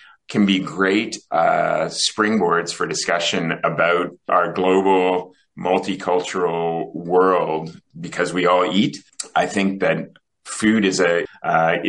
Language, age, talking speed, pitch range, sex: English, 30-49, 115 wpm, 85-95 Hz, male